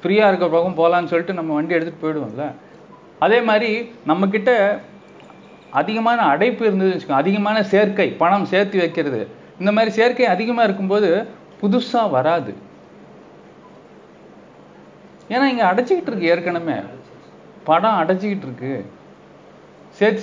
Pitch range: 180-230 Hz